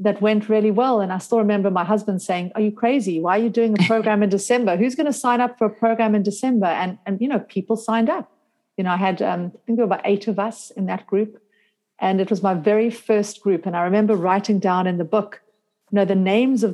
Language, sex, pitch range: English, female, 185-220 Hz